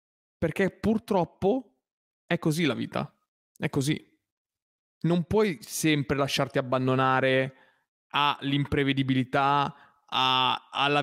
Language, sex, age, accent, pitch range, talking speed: Italian, male, 20-39, native, 135-170 Hz, 80 wpm